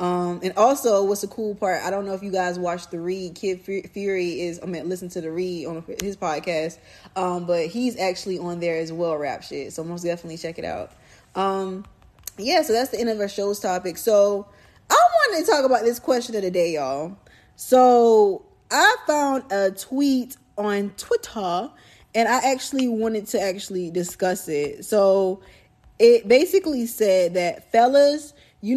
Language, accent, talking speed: English, American, 185 wpm